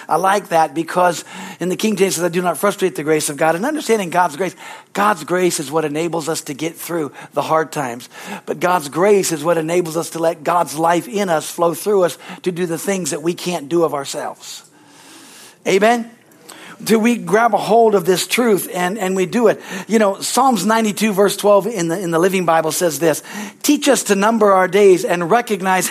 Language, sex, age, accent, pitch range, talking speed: English, male, 50-69, American, 175-220 Hz, 220 wpm